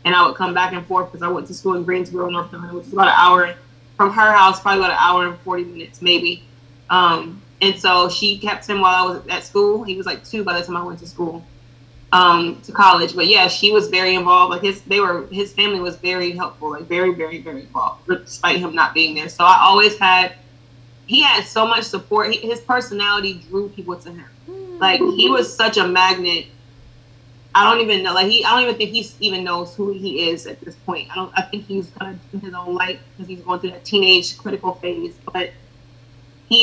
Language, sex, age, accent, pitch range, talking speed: English, female, 20-39, American, 170-200 Hz, 240 wpm